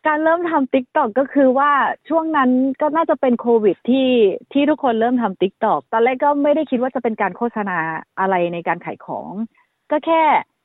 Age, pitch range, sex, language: 30-49, 195-265 Hz, female, Thai